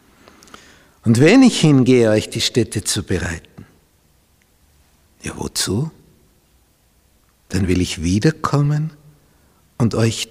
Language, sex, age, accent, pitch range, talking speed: German, male, 60-79, Austrian, 90-155 Hz, 100 wpm